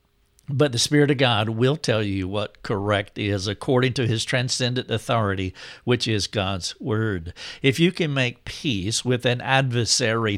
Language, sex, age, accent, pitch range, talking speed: English, male, 60-79, American, 105-130 Hz, 160 wpm